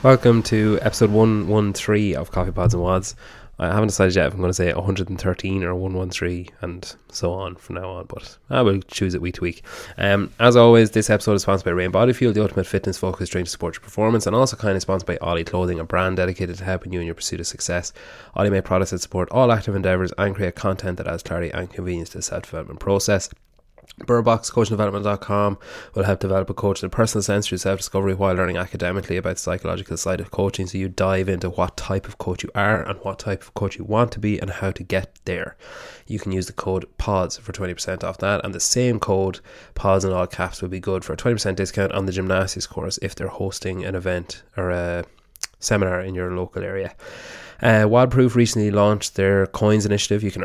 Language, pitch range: English, 90-105 Hz